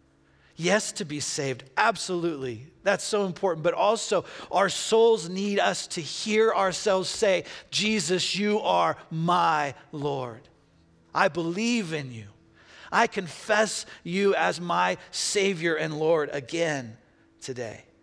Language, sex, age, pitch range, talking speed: English, male, 40-59, 115-160 Hz, 125 wpm